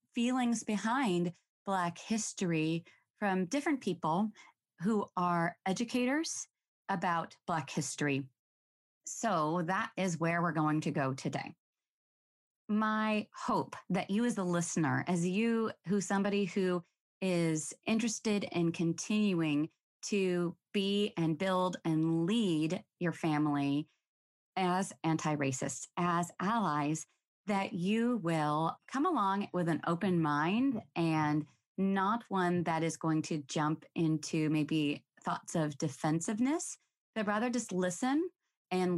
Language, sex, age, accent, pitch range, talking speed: English, female, 30-49, American, 155-200 Hz, 120 wpm